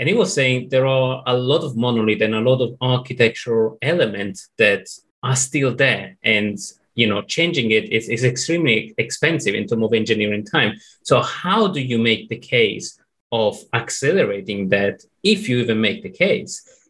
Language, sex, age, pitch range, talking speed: English, male, 30-49, 115-135 Hz, 180 wpm